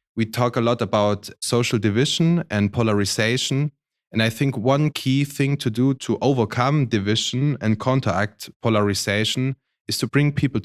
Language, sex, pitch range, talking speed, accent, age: Polish, male, 100-120 Hz, 150 wpm, German, 30-49